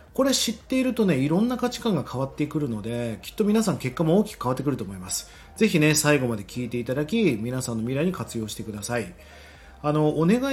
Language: Japanese